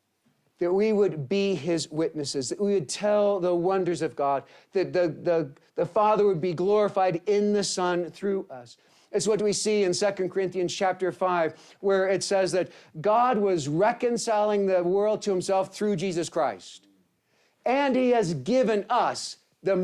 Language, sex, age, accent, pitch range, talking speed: English, male, 40-59, American, 160-205 Hz, 170 wpm